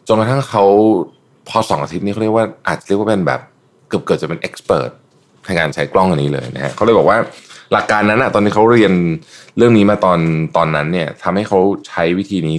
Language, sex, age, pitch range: Thai, male, 20-39, 75-110 Hz